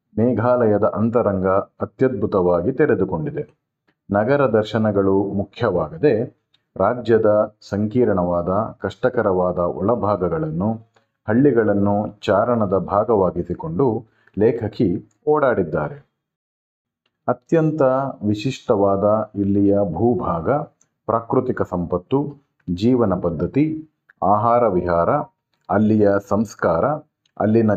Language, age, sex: Kannada, 40-59, male